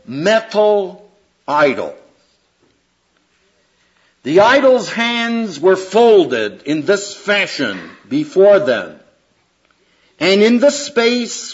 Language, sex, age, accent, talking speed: English, male, 60-79, American, 85 wpm